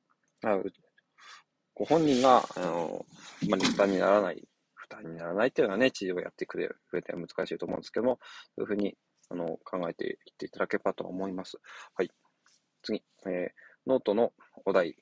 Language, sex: Japanese, male